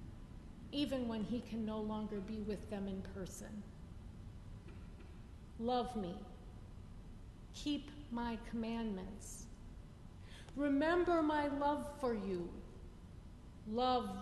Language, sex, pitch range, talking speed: English, female, 190-260 Hz, 95 wpm